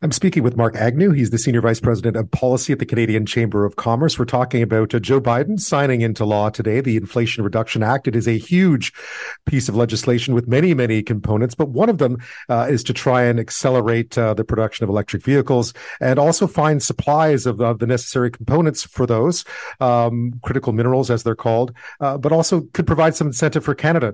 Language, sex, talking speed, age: English, male, 210 wpm, 40-59